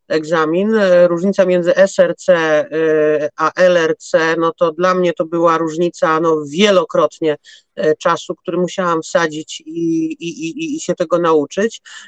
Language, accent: Polish, native